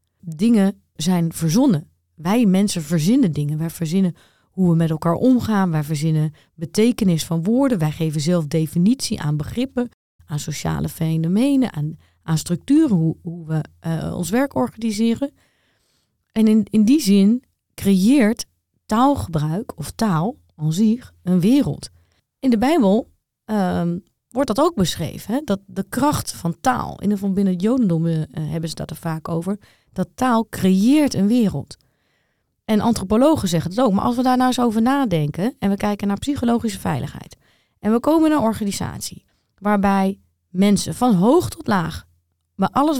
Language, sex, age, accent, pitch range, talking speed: Dutch, female, 30-49, Dutch, 165-240 Hz, 160 wpm